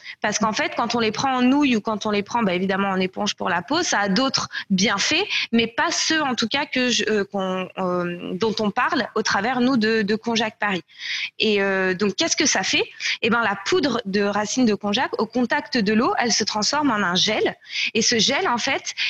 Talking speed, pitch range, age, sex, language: 240 wpm, 205-270 Hz, 20-39, female, French